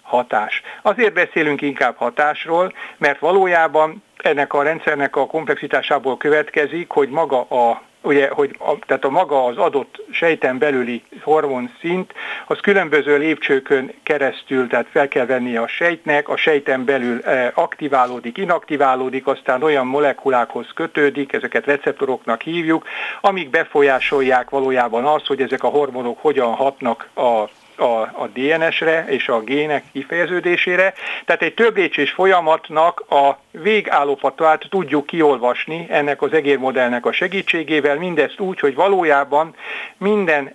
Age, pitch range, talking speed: 60-79, 135-170 Hz, 125 wpm